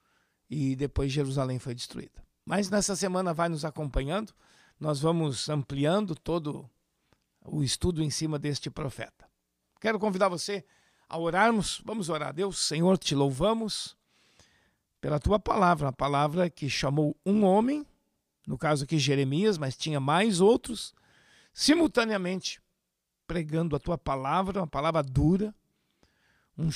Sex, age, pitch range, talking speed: male, 60-79, 145-190 Hz, 130 wpm